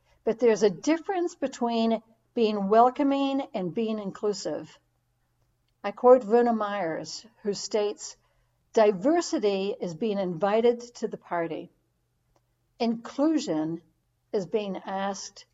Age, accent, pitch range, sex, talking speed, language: 60-79, American, 170-245 Hz, female, 105 wpm, English